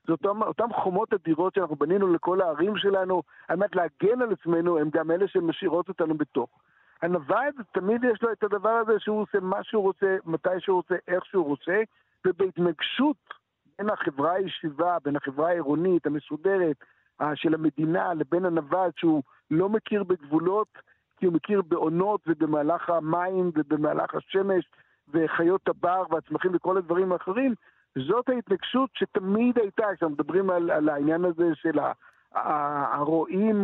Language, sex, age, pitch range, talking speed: Hebrew, male, 60-79, 160-200 Hz, 145 wpm